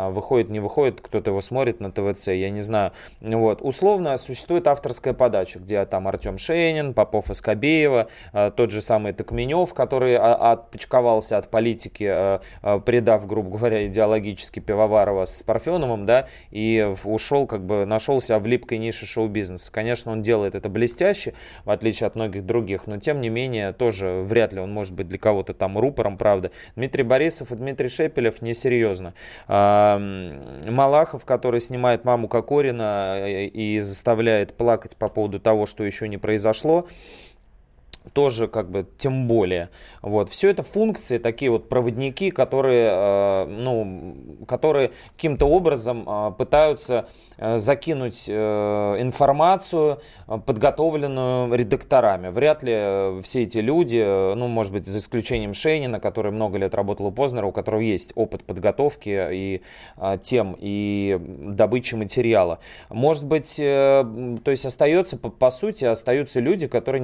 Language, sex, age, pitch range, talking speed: Russian, male, 20-39, 100-130 Hz, 145 wpm